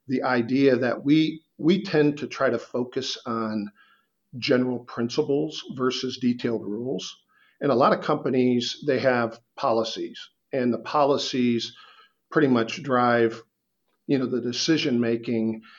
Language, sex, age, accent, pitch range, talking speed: English, male, 50-69, American, 120-150 Hz, 135 wpm